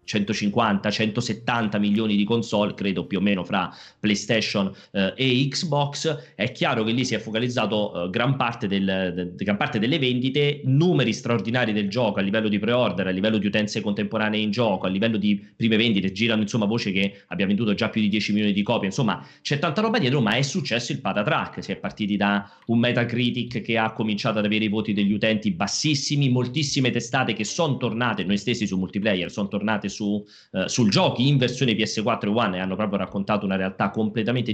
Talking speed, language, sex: 205 wpm, Italian, male